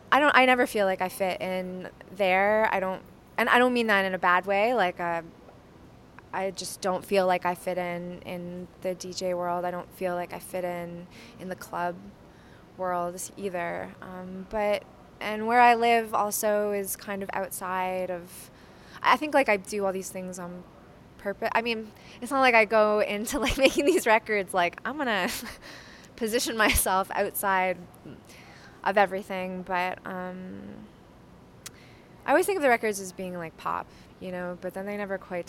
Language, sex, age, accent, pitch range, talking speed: English, female, 20-39, American, 180-210 Hz, 185 wpm